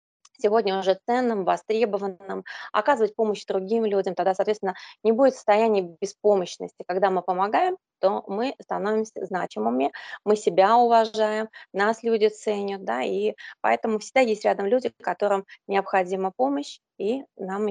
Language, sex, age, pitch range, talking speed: Russian, female, 20-39, 190-235 Hz, 130 wpm